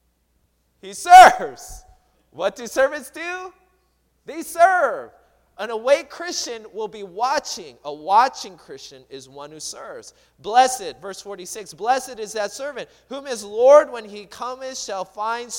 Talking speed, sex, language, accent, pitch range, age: 140 wpm, male, English, American, 190-275 Hz, 30-49